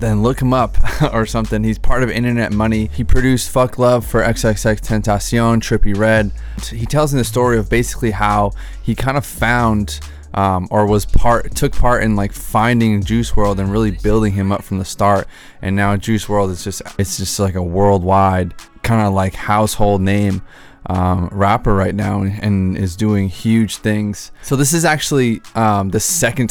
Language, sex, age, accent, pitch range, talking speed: English, male, 20-39, American, 100-115 Hz, 190 wpm